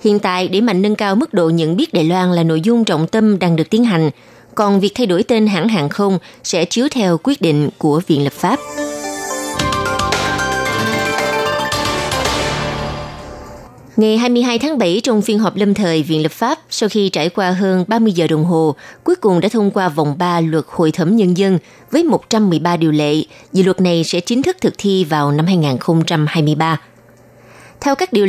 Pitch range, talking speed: 165-220 Hz, 190 wpm